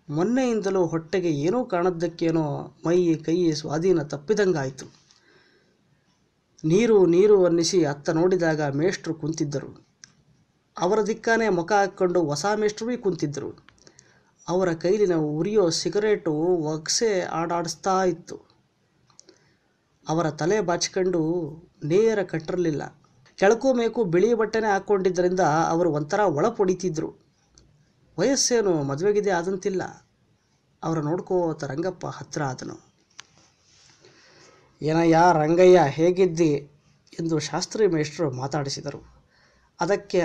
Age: 20-39